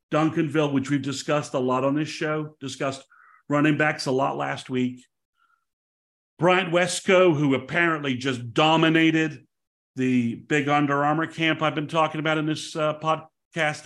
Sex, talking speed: male, 150 wpm